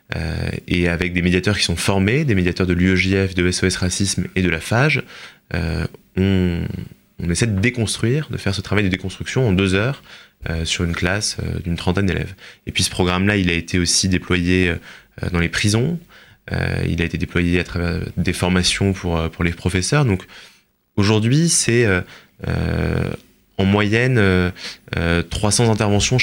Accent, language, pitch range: French, French, 90-110 Hz